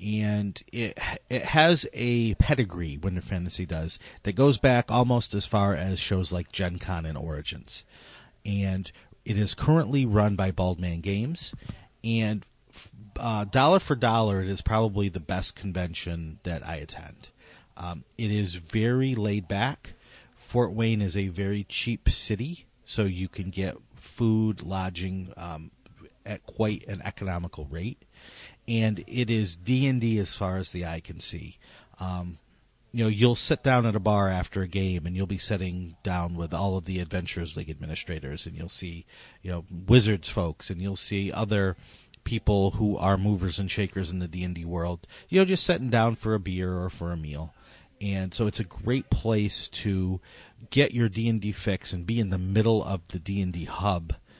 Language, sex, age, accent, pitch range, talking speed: English, male, 40-59, American, 90-110 Hz, 180 wpm